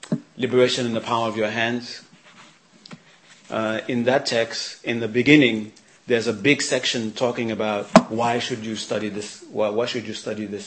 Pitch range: 110-125 Hz